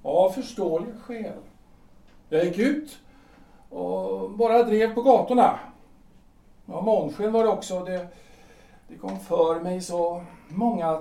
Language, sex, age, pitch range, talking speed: Swedish, male, 60-79, 180-235 Hz, 130 wpm